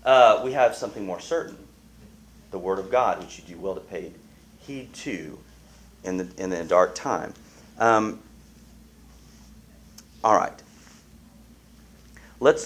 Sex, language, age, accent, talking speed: male, English, 40-59, American, 135 wpm